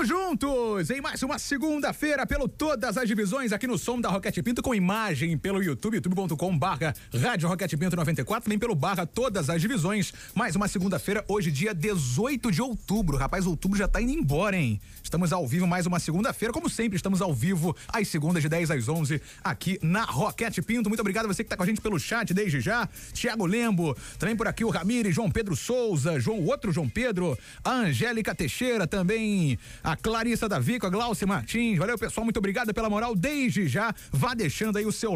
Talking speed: 200 wpm